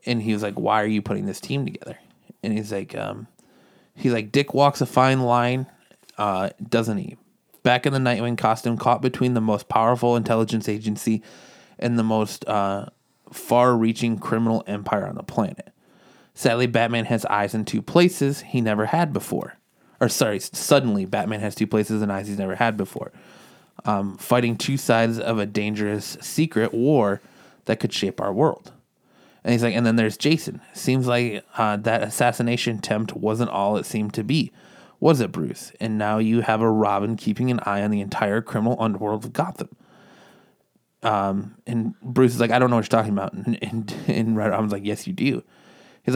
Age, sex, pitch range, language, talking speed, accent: 20-39, male, 110-130 Hz, English, 185 wpm, American